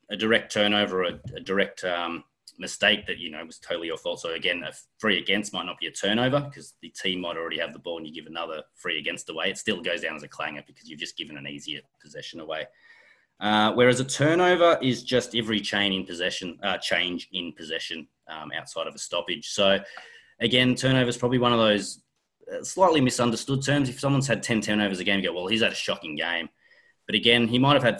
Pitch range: 95-125 Hz